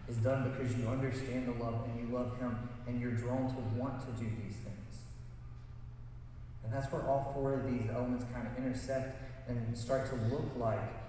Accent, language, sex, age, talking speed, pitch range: American, English, male, 30-49, 195 wpm, 115-130 Hz